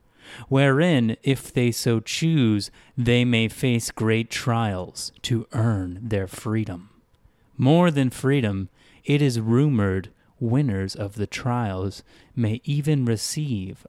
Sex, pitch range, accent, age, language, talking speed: male, 100-140 Hz, American, 30-49, English, 115 wpm